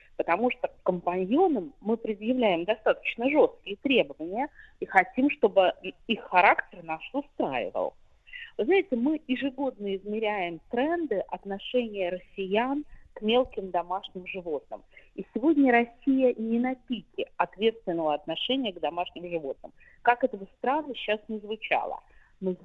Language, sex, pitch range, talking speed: Russian, female, 205-270 Hz, 120 wpm